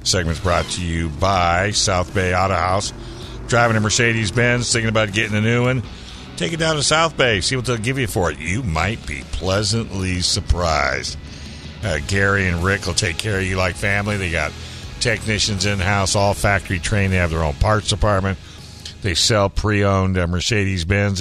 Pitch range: 85-105 Hz